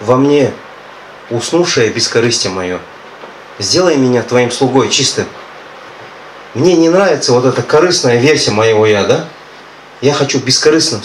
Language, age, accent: Russian, 30-49, native